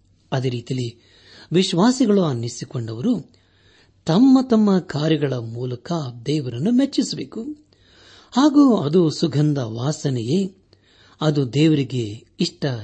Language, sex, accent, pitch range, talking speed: Kannada, male, native, 110-170 Hz, 80 wpm